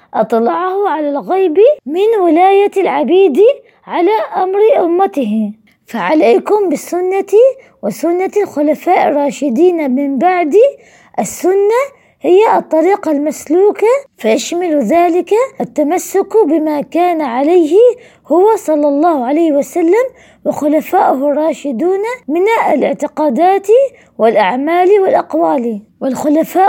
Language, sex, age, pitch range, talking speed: Arabic, female, 20-39, 285-400 Hz, 85 wpm